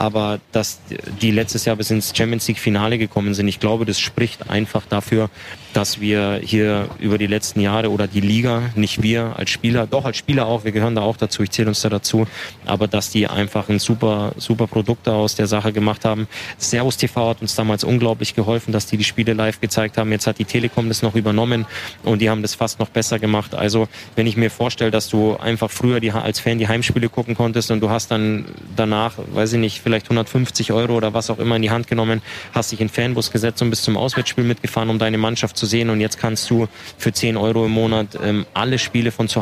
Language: German